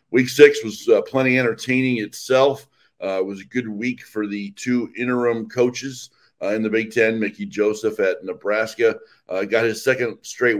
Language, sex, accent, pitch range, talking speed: English, male, American, 100-125 Hz, 180 wpm